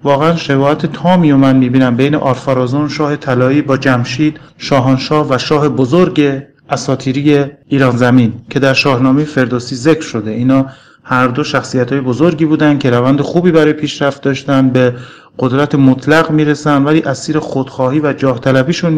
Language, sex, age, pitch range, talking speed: Persian, male, 40-59, 130-150 Hz, 150 wpm